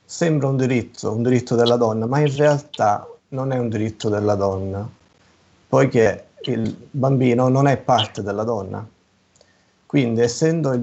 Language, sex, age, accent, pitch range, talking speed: Italian, male, 30-49, native, 105-130 Hz, 150 wpm